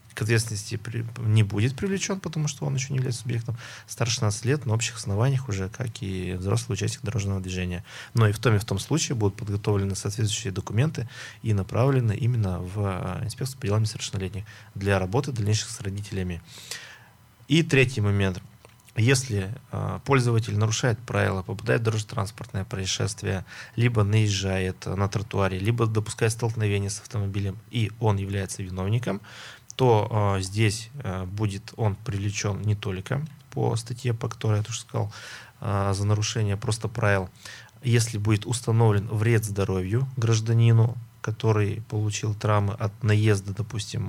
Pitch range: 100-120 Hz